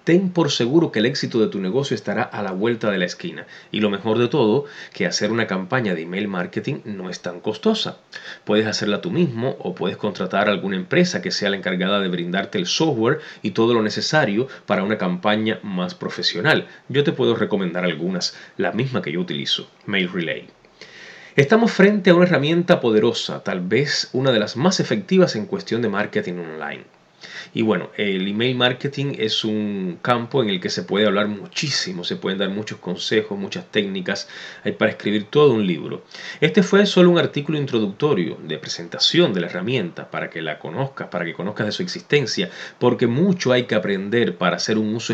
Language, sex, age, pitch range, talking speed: Spanish, male, 30-49, 105-180 Hz, 195 wpm